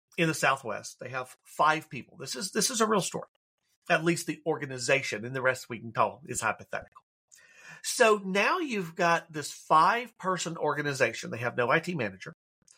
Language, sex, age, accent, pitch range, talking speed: English, male, 40-59, American, 130-170 Hz, 180 wpm